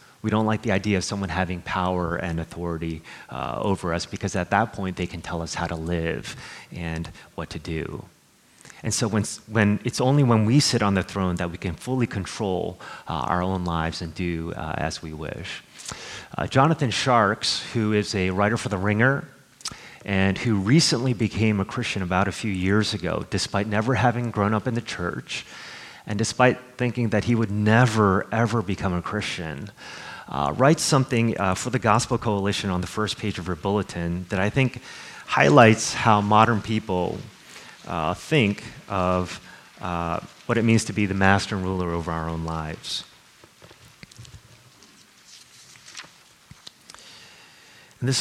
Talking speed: 170 wpm